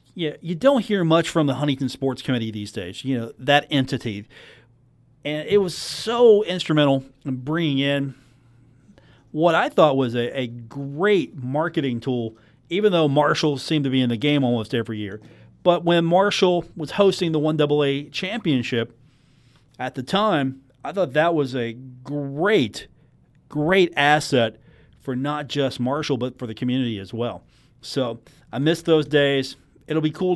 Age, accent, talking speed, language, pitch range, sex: 40-59, American, 160 wpm, English, 125-165 Hz, male